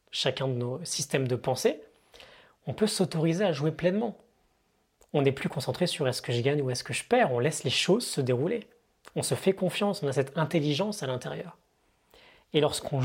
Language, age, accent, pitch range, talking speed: French, 30-49, French, 130-175 Hz, 200 wpm